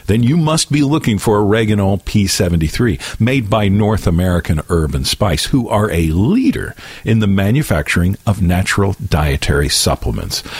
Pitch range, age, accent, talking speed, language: 85-125 Hz, 50-69, American, 145 wpm, English